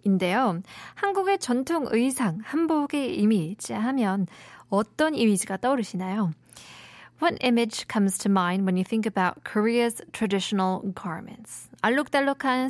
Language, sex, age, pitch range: Korean, female, 20-39, 190-260 Hz